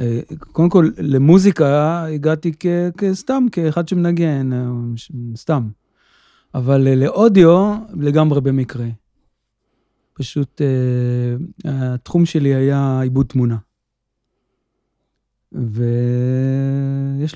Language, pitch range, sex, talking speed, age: Hebrew, 125-150 Hz, male, 75 wpm, 30-49